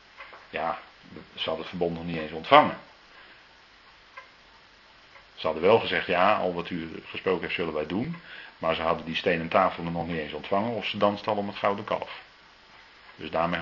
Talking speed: 185 wpm